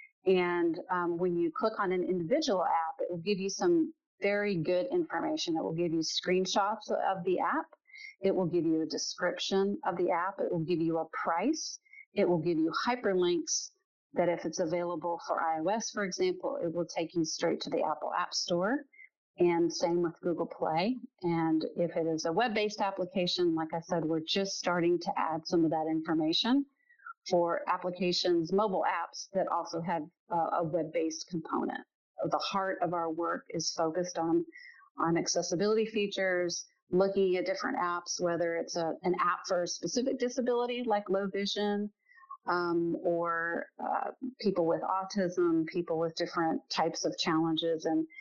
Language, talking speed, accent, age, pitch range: English, 170 wpm, American, 40-59, 170-210 Hz